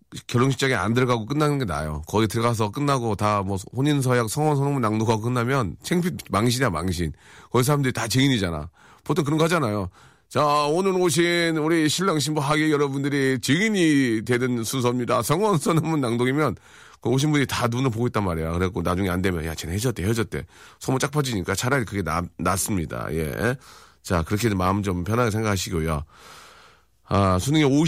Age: 40-59